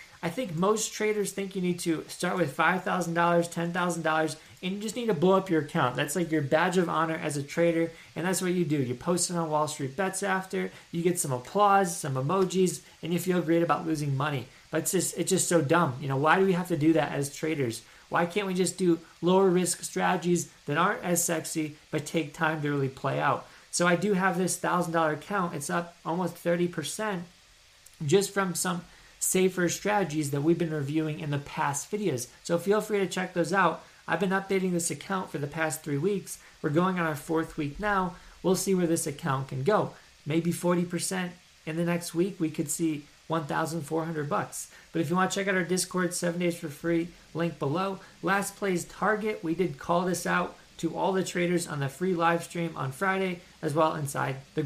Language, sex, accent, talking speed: English, male, American, 225 wpm